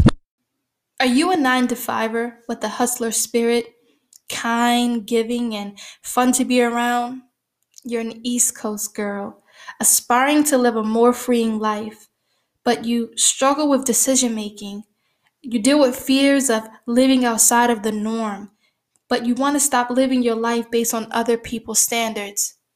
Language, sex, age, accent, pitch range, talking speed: English, female, 10-29, American, 225-255 Hz, 150 wpm